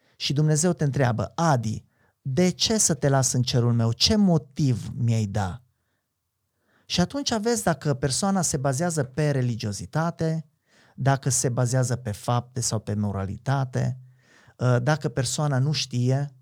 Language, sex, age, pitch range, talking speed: Romanian, male, 30-49, 115-145 Hz, 140 wpm